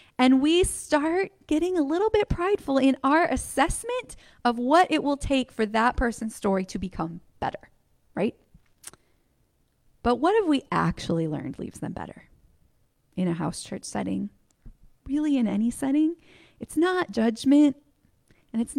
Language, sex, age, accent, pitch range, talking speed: English, female, 20-39, American, 210-290 Hz, 150 wpm